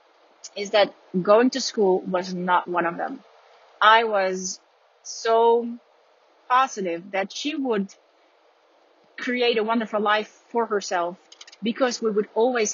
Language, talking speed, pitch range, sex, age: Dutch, 125 wpm, 185-235 Hz, female, 30-49